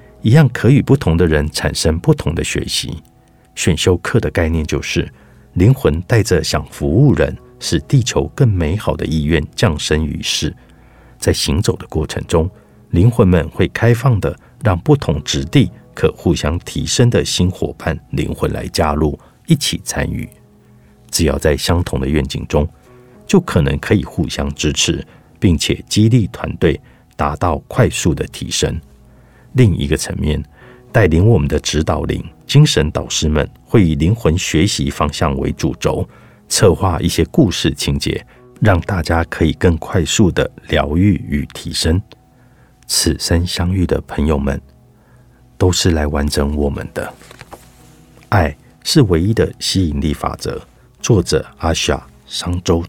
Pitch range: 75-100 Hz